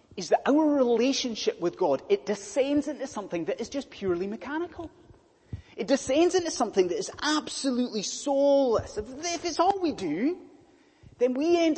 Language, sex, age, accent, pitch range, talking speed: English, male, 30-49, British, 215-315 Hz, 165 wpm